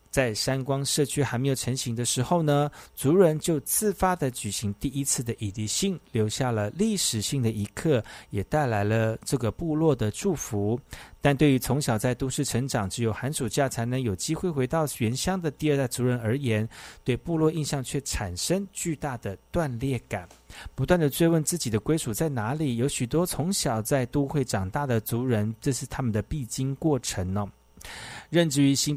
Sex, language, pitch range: male, Chinese, 110-150 Hz